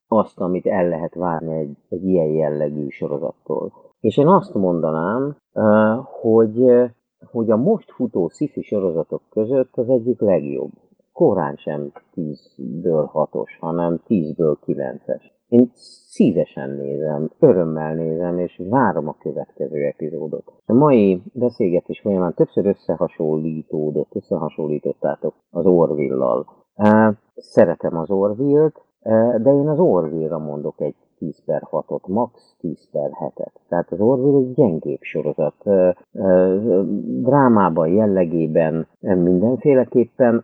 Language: Hungarian